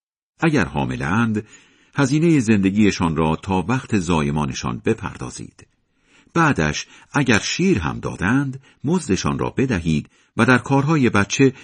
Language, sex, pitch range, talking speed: Persian, male, 75-125 Hz, 110 wpm